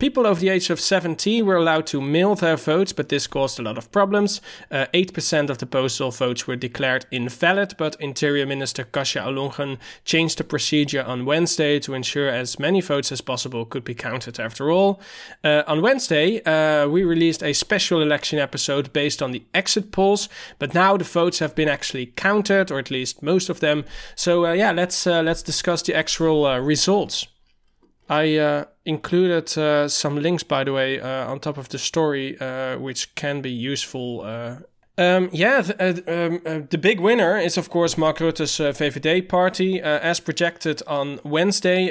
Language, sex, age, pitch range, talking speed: English, male, 20-39, 135-170 Hz, 190 wpm